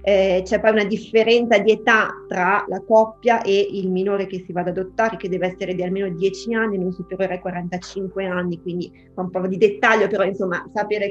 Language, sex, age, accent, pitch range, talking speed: Italian, female, 20-39, native, 185-210 Hz, 210 wpm